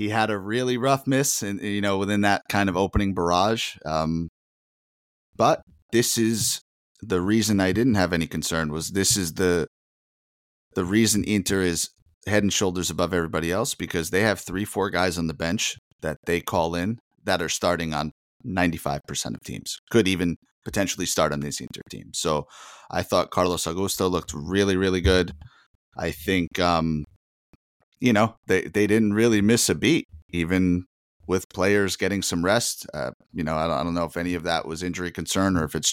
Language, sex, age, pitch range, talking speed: English, male, 30-49, 85-100 Hz, 190 wpm